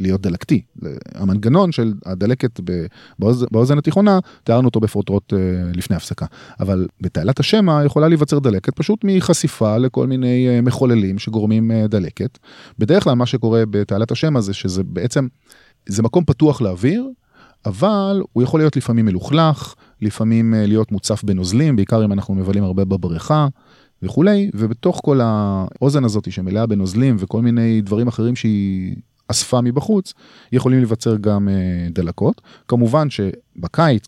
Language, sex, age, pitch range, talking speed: Hebrew, male, 30-49, 100-140 Hz, 135 wpm